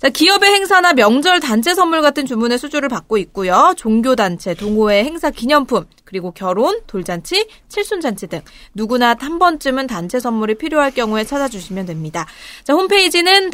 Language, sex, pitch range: Korean, female, 190-300 Hz